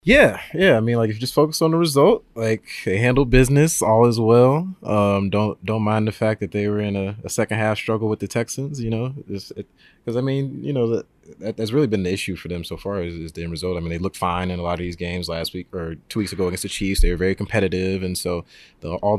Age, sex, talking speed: 30-49, male, 270 wpm